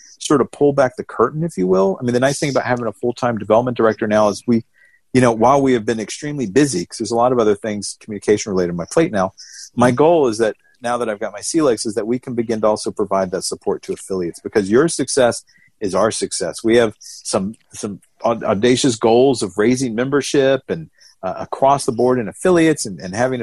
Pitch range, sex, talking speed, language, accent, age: 110-135 Hz, male, 235 wpm, English, American, 50-69